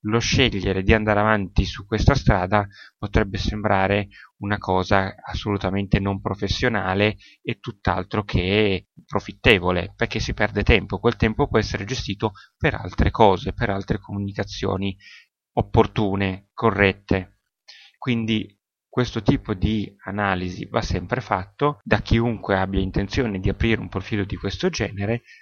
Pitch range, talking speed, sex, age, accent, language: 100-120 Hz, 130 wpm, male, 30-49, native, Italian